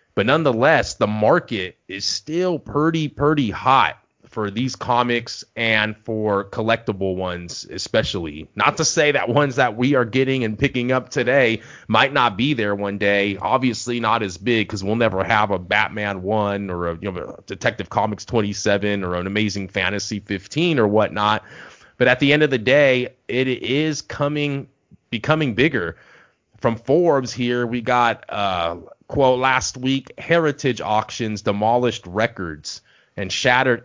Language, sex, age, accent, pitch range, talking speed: English, male, 30-49, American, 100-130 Hz, 160 wpm